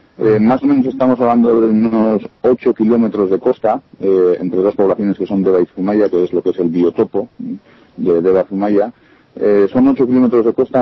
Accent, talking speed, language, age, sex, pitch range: Spanish, 200 wpm, Spanish, 40-59, male, 95-120 Hz